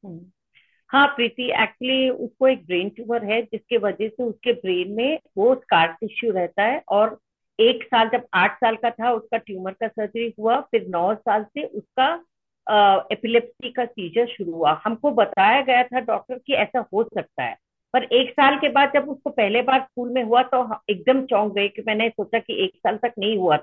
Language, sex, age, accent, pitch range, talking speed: Hindi, female, 50-69, native, 220-275 Hz, 195 wpm